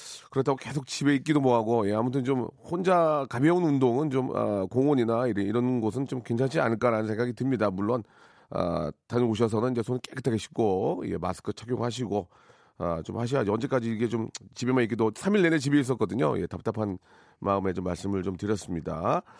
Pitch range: 115-180 Hz